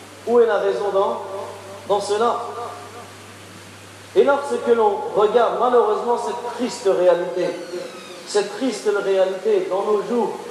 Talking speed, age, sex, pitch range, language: 120 wpm, 40-59, male, 225-250 Hz, French